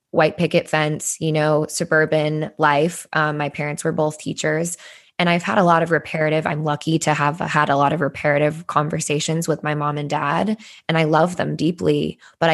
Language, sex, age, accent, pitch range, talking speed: English, female, 10-29, American, 155-170 Hz, 195 wpm